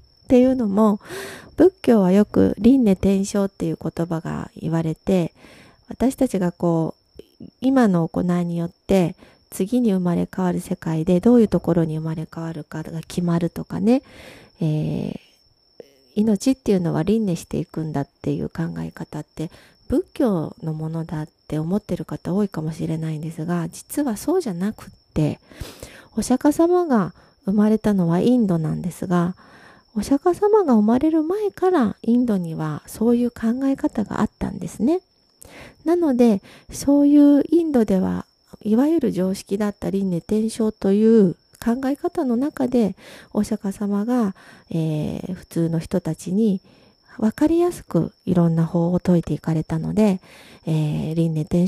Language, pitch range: Japanese, 165-240 Hz